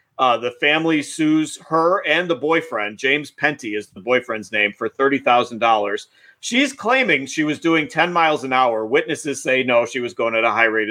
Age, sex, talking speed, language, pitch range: 40-59, male, 195 wpm, English, 125-175 Hz